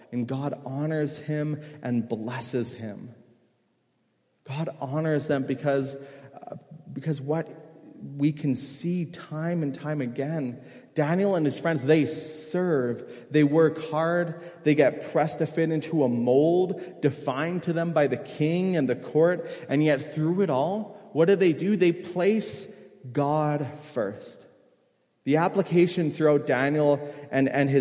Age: 30-49